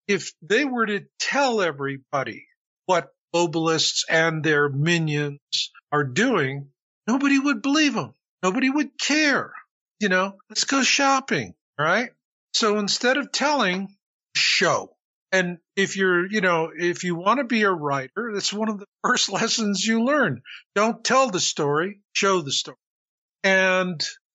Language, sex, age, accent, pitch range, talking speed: English, male, 50-69, American, 155-205 Hz, 145 wpm